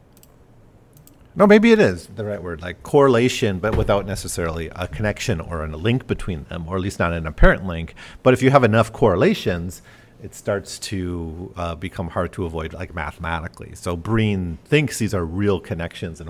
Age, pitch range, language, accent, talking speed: 40-59, 85-115 Hz, English, American, 185 wpm